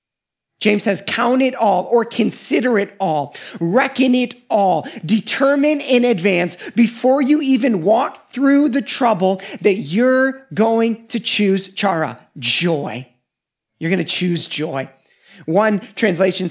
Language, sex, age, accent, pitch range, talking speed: English, male, 30-49, American, 155-230 Hz, 130 wpm